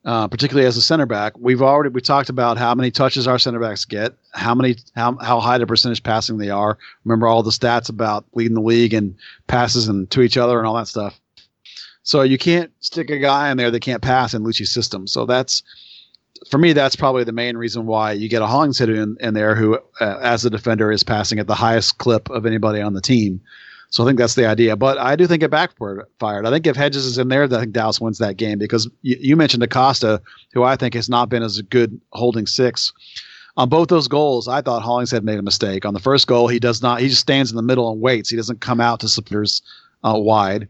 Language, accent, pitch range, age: English, American, 110-130 Hz, 40-59